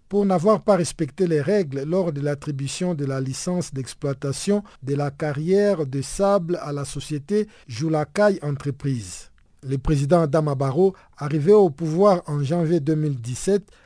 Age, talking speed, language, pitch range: 50-69, 145 wpm, French, 140-185 Hz